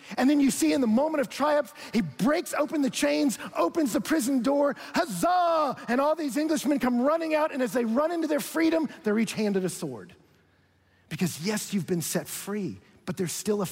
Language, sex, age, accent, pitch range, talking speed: English, male, 50-69, American, 145-225 Hz, 210 wpm